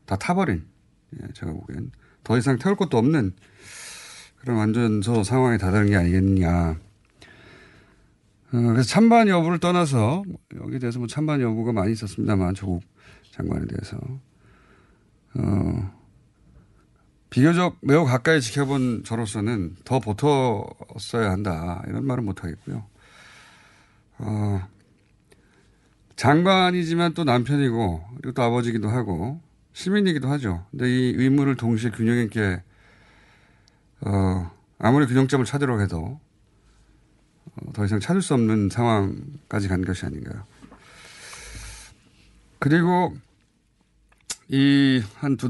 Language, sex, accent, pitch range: Korean, male, native, 100-135 Hz